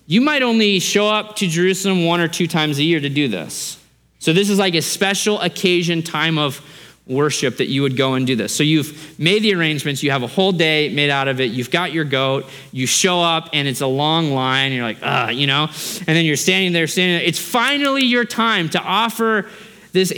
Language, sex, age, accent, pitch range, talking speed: English, male, 30-49, American, 130-190 Hz, 230 wpm